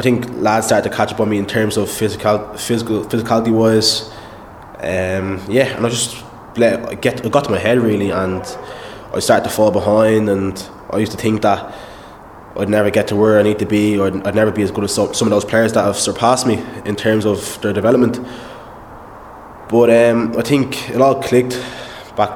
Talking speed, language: 210 wpm, English